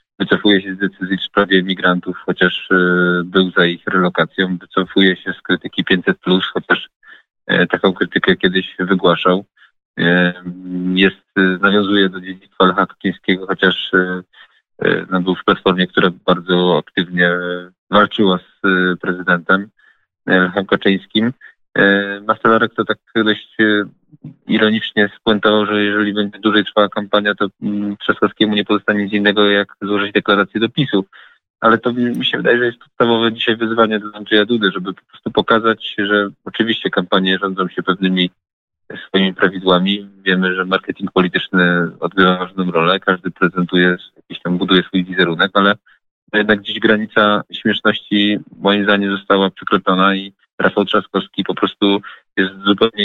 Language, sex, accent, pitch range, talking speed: Polish, male, native, 90-105 Hz, 130 wpm